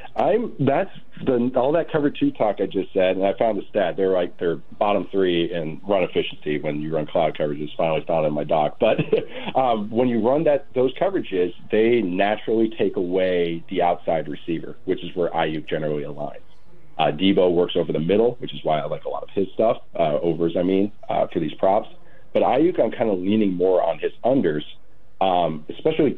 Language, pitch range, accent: English, 85-110 Hz, American